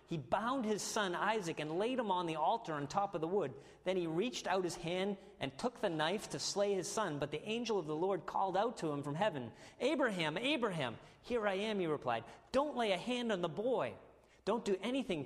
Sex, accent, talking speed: male, American, 230 wpm